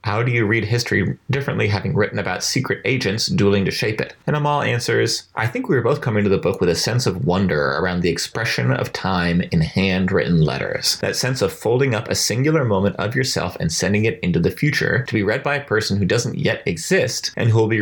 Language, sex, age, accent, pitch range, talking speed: English, male, 30-49, American, 95-130 Hz, 235 wpm